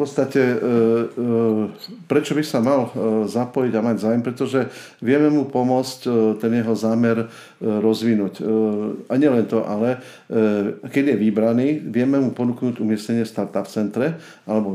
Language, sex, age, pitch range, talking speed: Slovak, male, 50-69, 105-120 Hz, 135 wpm